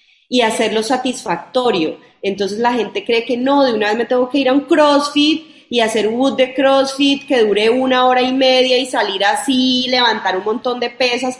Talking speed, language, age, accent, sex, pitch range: 205 wpm, Spanish, 30-49, Colombian, female, 210-265 Hz